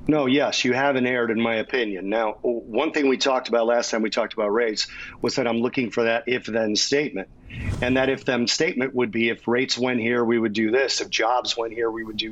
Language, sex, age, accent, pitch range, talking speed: English, male, 40-59, American, 115-135 Hz, 250 wpm